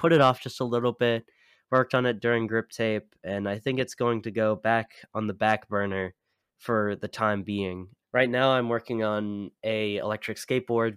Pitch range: 95-110 Hz